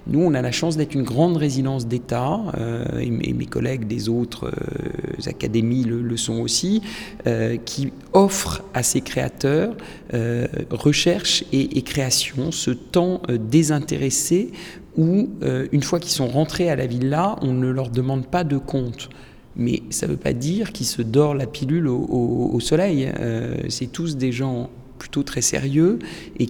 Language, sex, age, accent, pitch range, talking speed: French, male, 40-59, French, 120-165 Hz, 175 wpm